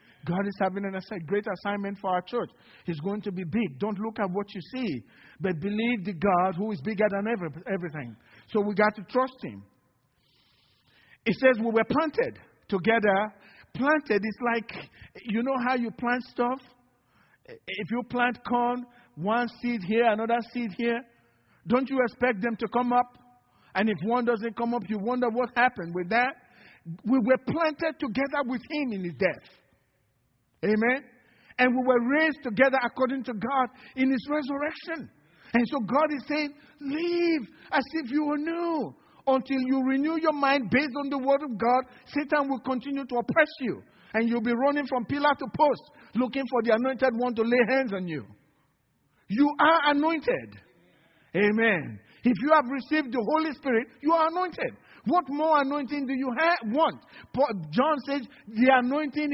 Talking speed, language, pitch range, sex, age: 170 wpm, English, 210-280 Hz, male, 50-69